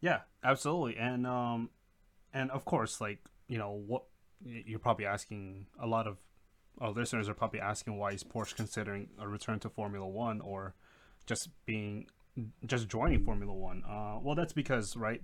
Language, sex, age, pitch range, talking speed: English, male, 20-39, 100-115 Hz, 165 wpm